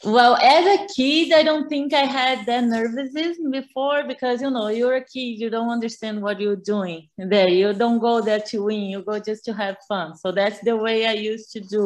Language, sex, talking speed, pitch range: English, female, 230 wpm, 205-240 Hz